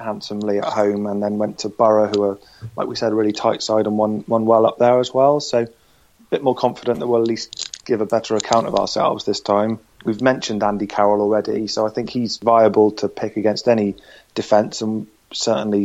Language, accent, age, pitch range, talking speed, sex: English, British, 30-49, 105-115 Hz, 225 wpm, male